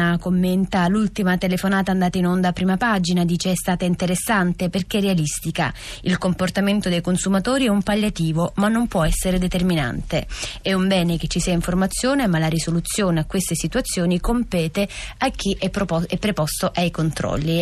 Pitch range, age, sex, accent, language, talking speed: 165-195 Hz, 20-39, female, native, Italian, 165 wpm